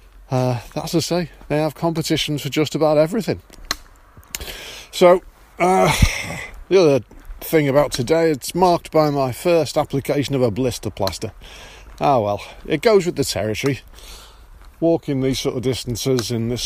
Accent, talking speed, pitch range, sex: British, 150 wpm, 110-150 Hz, male